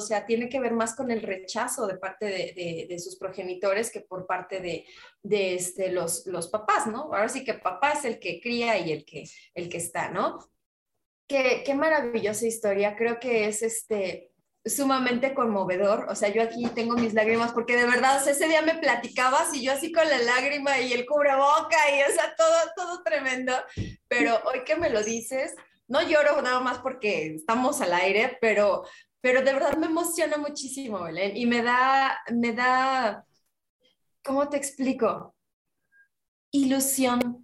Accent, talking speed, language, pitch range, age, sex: Mexican, 180 wpm, Spanish, 200-265 Hz, 20-39, female